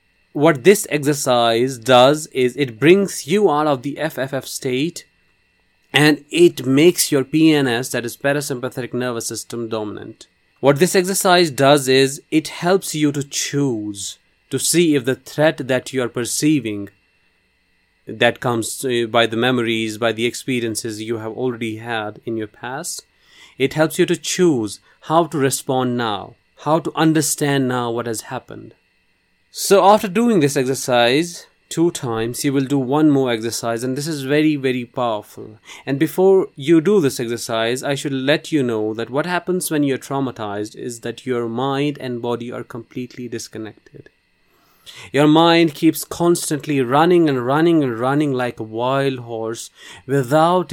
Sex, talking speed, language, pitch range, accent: male, 155 wpm, English, 115-155 Hz, Indian